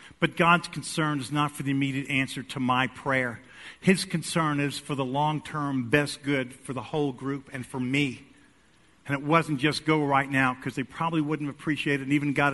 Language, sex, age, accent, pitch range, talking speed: English, male, 50-69, American, 135-170 Hz, 205 wpm